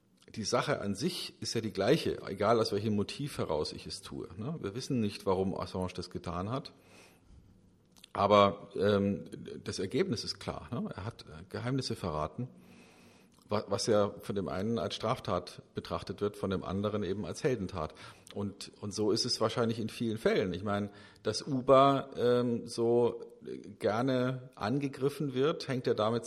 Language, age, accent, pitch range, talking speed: German, 50-69, German, 100-120 Hz, 155 wpm